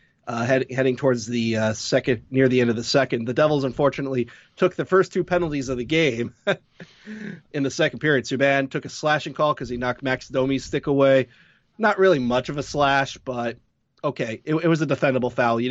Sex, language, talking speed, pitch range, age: male, English, 210 wpm, 125-155 Hz, 30-49